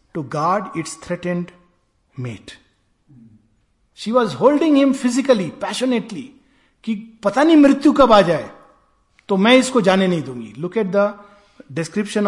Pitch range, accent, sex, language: 150-215 Hz, native, male, Hindi